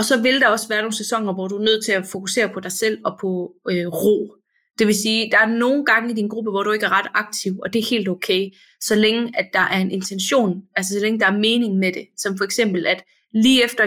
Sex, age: female, 30-49